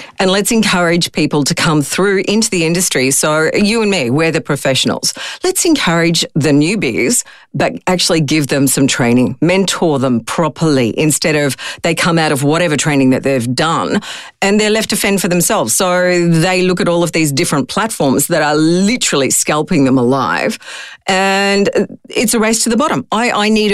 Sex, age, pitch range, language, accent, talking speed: female, 40-59, 150-195 Hz, English, Australian, 185 wpm